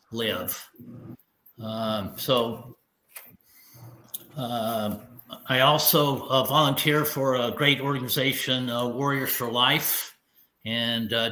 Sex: male